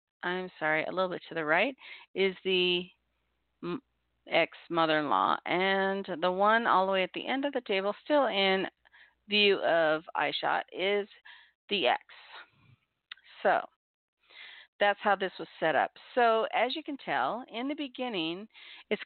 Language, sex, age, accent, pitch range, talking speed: English, female, 40-59, American, 175-230 Hz, 150 wpm